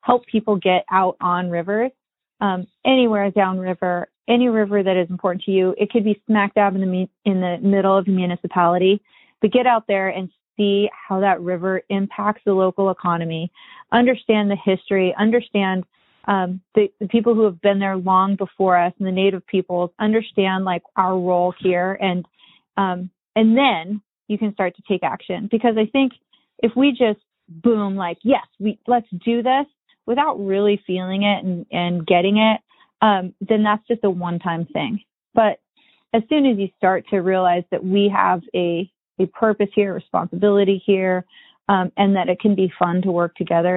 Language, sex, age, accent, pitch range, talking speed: English, female, 30-49, American, 180-215 Hz, 180 wpm